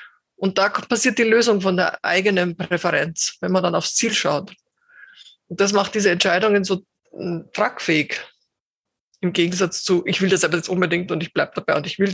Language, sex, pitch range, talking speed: German, female, 185-230 Hz, 185 wpm